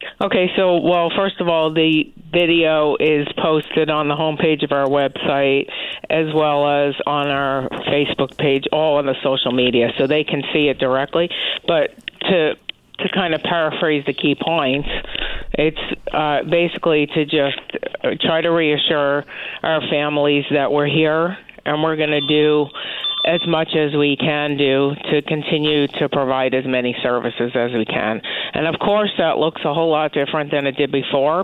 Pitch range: 140-160 Hz